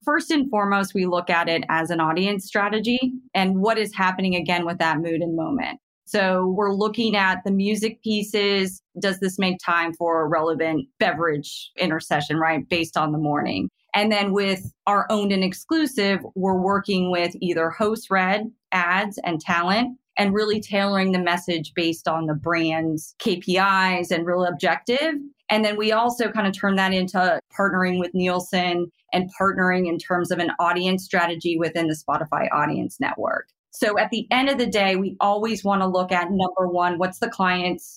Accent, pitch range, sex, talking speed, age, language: American, 170-200 Hz, female, 180 wpm, 30-49, English